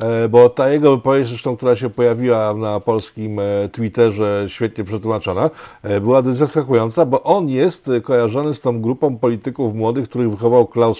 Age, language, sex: 50-69, Polish, male